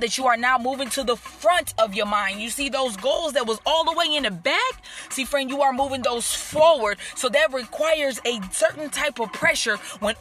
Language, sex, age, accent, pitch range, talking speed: English, female, 20-39, American, 215-290 Hz, 230 wpm